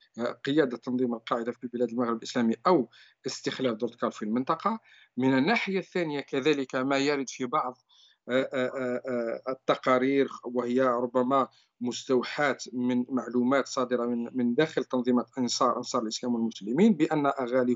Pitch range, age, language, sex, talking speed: 125-145 Hz, 50-69, Arabic, male, 120 wpm